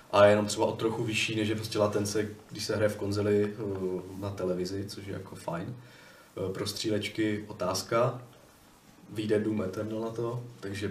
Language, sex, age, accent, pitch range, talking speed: Czech, male, 20-39, native, 100-115 Hz, 170 wpm